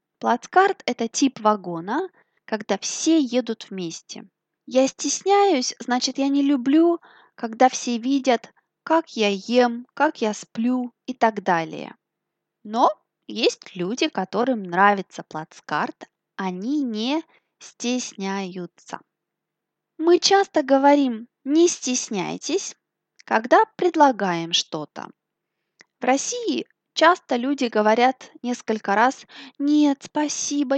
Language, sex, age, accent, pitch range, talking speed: Russian, female, 20-39, native, 220-290 Hz, 100 wpm